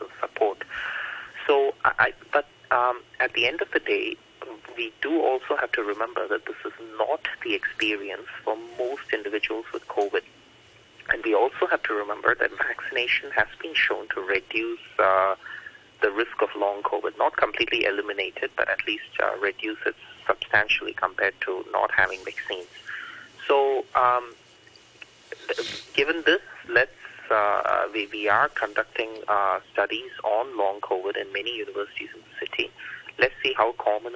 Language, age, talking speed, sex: English, 30-49, 155 wpm, male